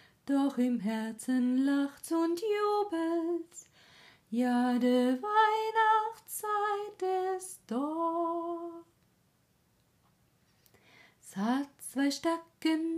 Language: German